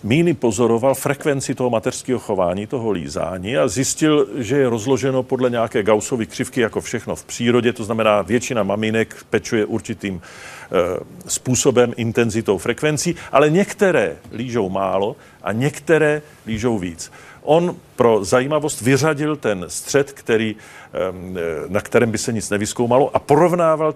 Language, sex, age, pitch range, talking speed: Czech, male, 50-69, 110-140 Hz, 140 wpm